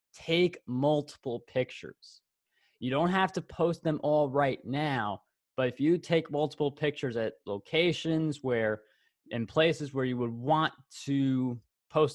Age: 20-39